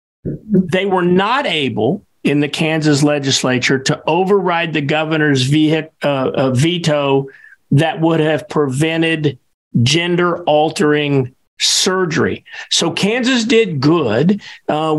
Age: 50-69